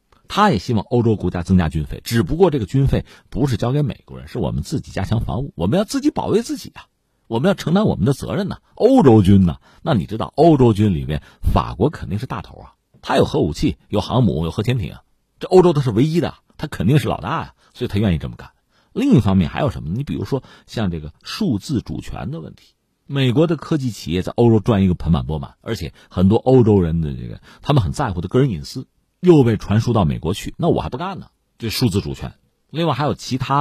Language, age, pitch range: Chinese, 50-69, 90-140 Hz